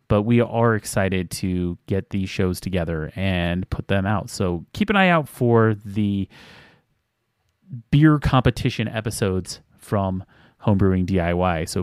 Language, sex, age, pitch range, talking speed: English, male, 30-49, 100-125 Hz, 135 wpm